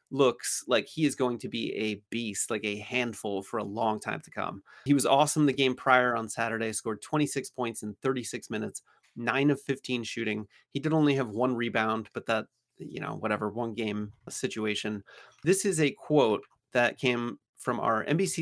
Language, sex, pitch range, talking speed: English, male, 110-140 Hz, 195 wpm